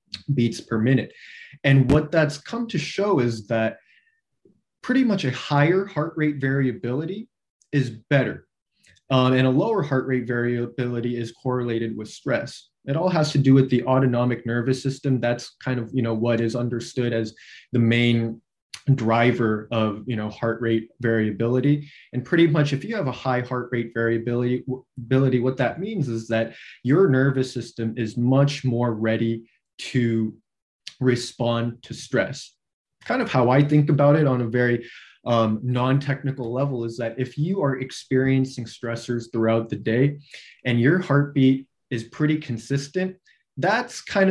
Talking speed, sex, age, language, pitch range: 155 wpm, male, 20-39, English, 120-145 Hz